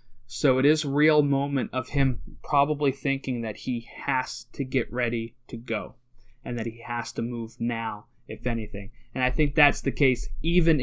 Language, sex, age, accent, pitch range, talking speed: English, male, 20-39, American, 120-145 Hz, 190 wpm